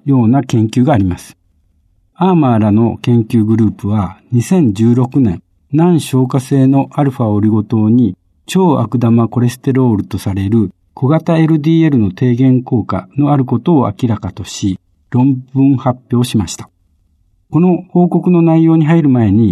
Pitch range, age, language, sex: 105-155 Hz, 60-79, Japanese, male